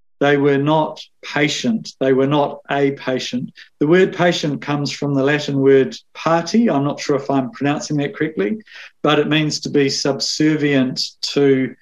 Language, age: English, 50-69